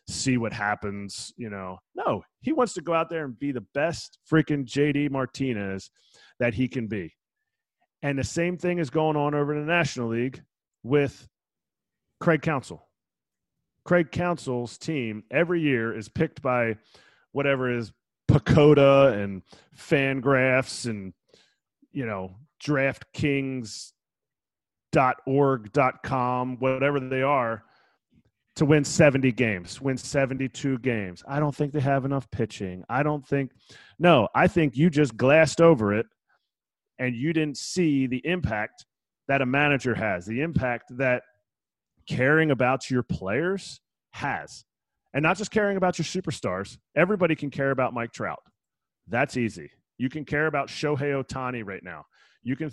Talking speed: 145 wpm